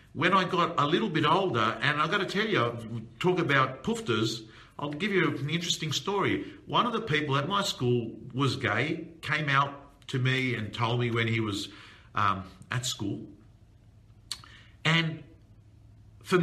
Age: 50-69